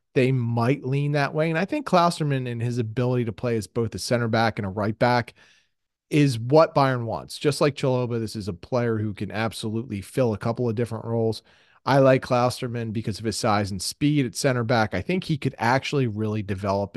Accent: American